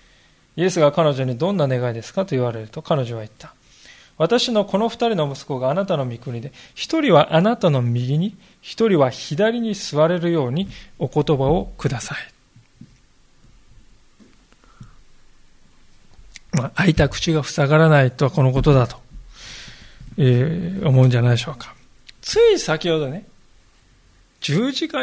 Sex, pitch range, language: male, 135-190 Hz, Japanese